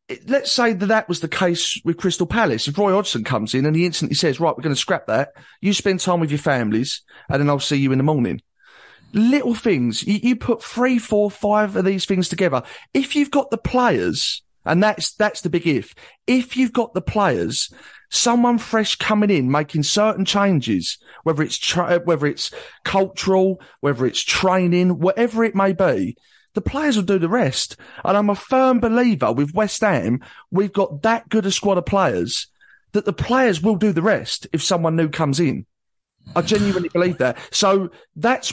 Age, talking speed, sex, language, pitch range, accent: 30-49, 195 wpm, male, English, 155-215 Hz, British